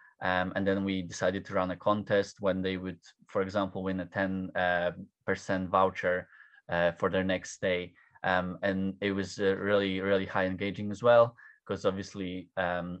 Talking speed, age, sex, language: 170 wpm, 20-39, male, English